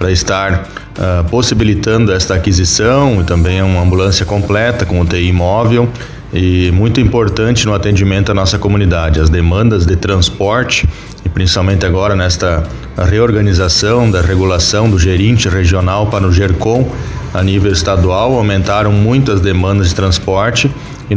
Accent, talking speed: Brazilian, 135 wpm